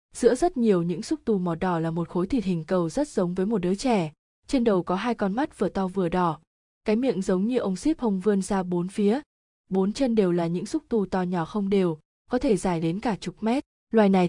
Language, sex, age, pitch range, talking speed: Vietnamese, female, 20-39, 180-225 Hz, 255 wpm